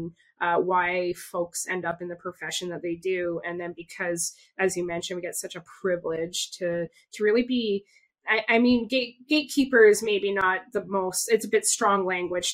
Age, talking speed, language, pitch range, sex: 20-39, 190 wpm, English, 175-210 Hz, female